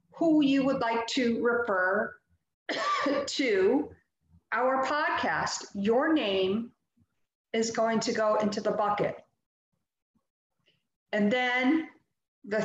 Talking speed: 100 wpm